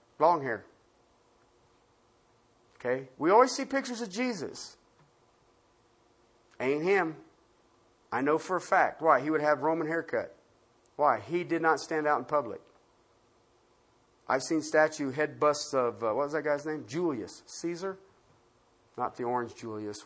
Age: 50-69